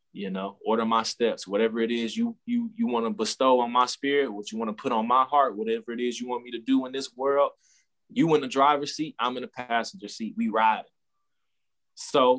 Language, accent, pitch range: English, American, 110-140 Hz